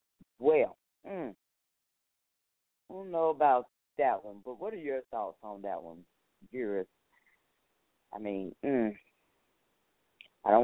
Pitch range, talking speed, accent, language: 115-155 Hz, 125 wpm, American, English